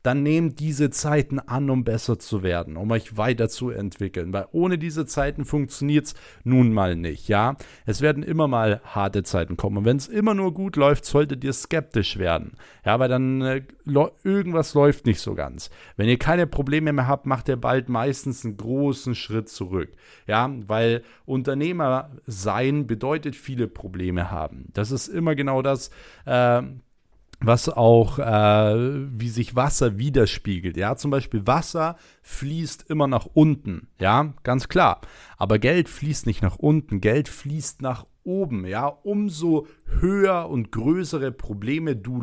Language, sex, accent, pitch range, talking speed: German, male, German, 110-150 Hz, 160 wpm